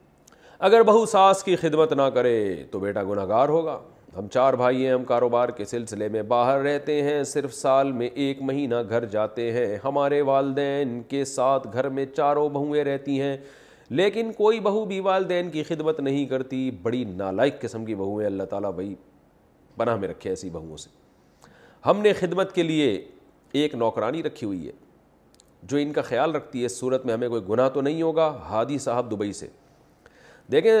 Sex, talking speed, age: male, 185 wpm, 40-59